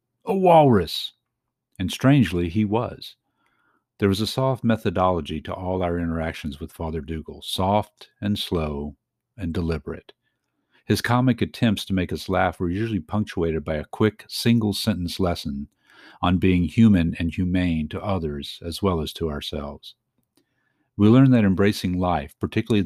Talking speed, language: 145 wpm, English